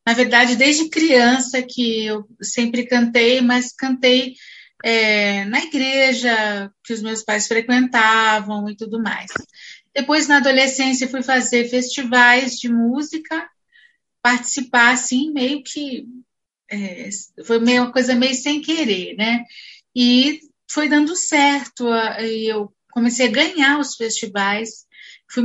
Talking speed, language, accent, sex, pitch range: 130 wpm, Portuguese, Brazilian, female, 230-275 Hz